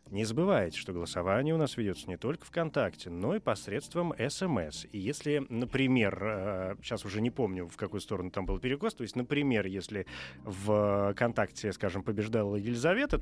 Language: Russian